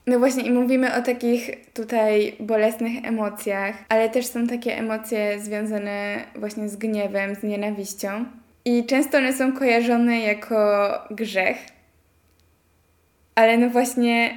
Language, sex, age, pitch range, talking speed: Polish, female, 10-29, 210-235 Hz, 125 wpm